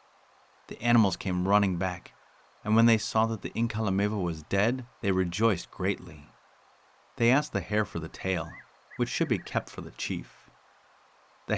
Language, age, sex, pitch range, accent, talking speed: English, 40-59, male, 85-120 Hz, American, 165 wpm